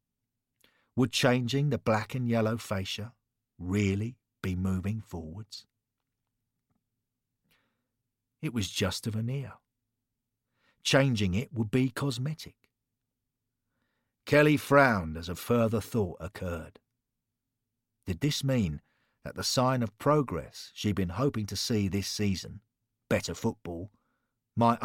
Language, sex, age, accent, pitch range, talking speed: English, male, 50-69, British, 105-125 Hz, 110 wpm